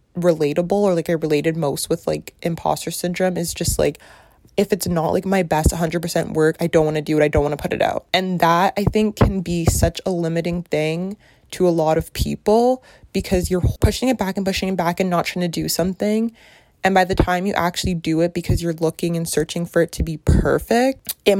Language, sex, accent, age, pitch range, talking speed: English, female, American, 20-39, 165-195 Hz, 235 wpm